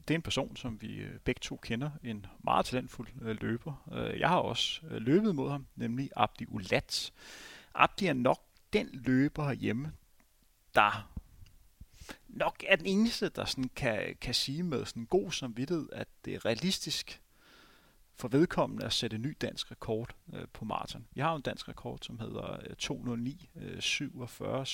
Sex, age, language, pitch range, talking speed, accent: male, 30-49, Danish, 115-150 Hz, 155 wpm, native